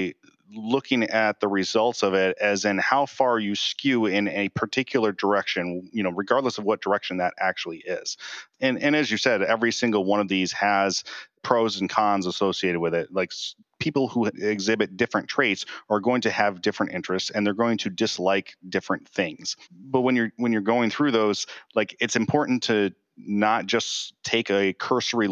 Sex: male